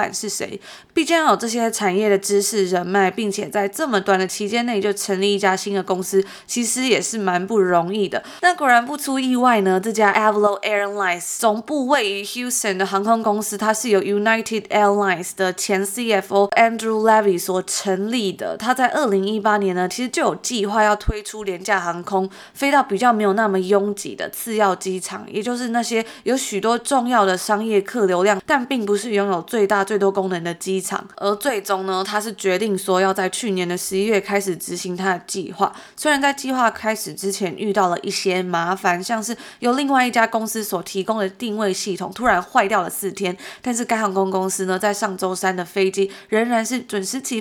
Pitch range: 190-225 Hz